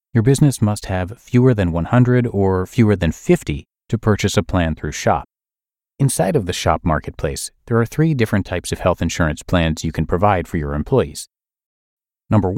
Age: 40-59